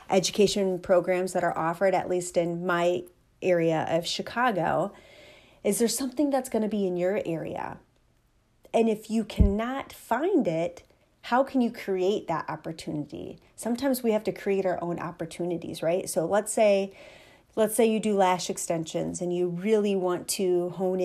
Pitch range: 180-220 Hz